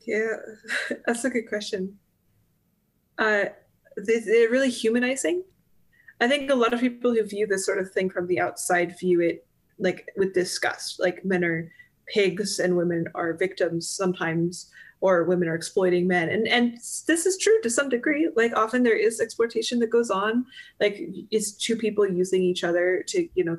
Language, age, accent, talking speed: English, 20-39, American, 175 wpm